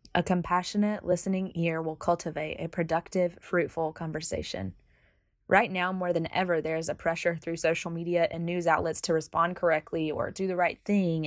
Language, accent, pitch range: English, American, 165-190 Hz